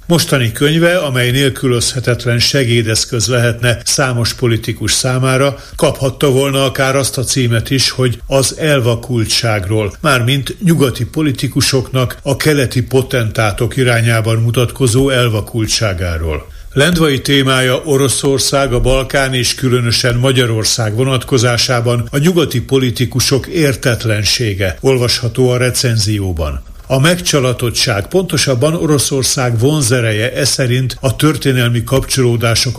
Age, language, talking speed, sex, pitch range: 60-79, Hungarian, 95 wpm, male, 115-135 Hz